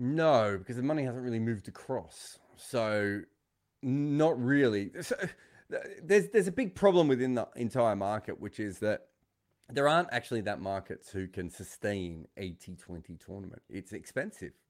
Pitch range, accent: 95-140 Hz, Australian